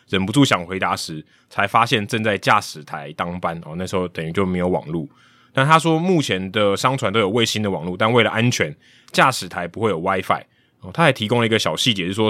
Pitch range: 95-120 Hz